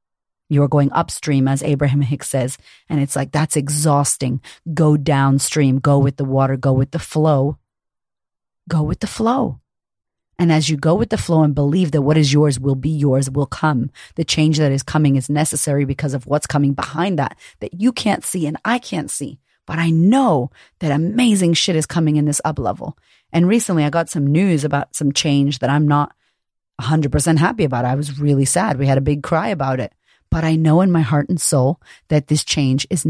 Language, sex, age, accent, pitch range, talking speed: English, female, 30-49, American, 140-160 Hz, 210 wpm